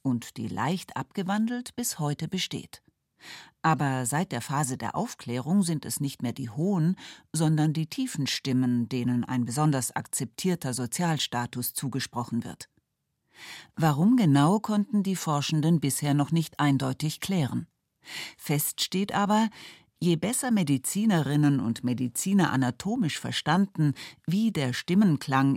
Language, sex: German, female